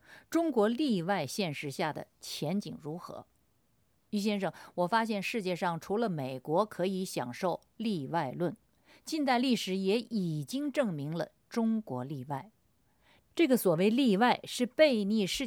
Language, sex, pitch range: Chinese, female, 165-230 Hz